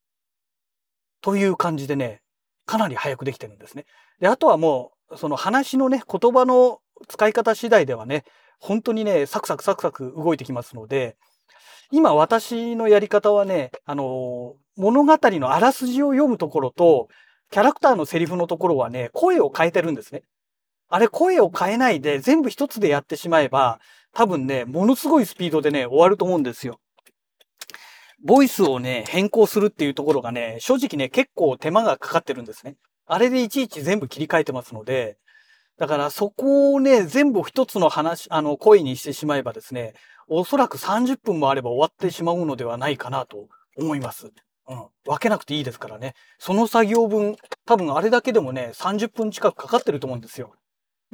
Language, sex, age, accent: Japanese, male, 40-59, native